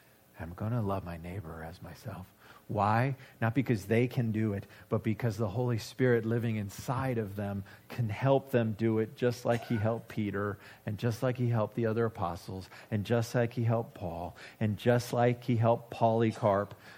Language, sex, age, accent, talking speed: English, male, 40-59, American, 190 wpm